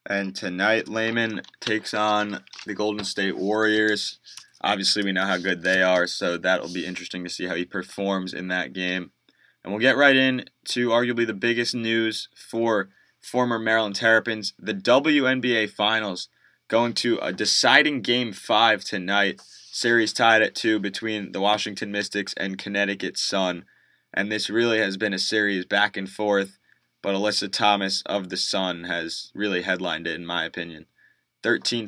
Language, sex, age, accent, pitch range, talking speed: English, male, 20-39, American, 95-110 Hz, 165 wpm